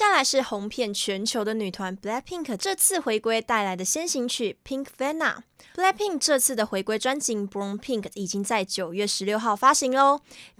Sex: female